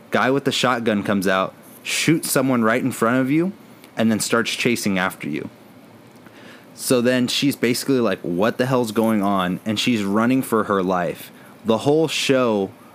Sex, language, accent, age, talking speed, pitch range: male, English, American, 20-39, 175 wpm, 105-125 Hz